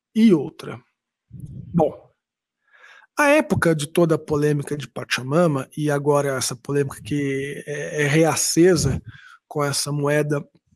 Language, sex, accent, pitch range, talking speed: Portuguese, male, Brazilian, 150-180 Hz, 115 wpm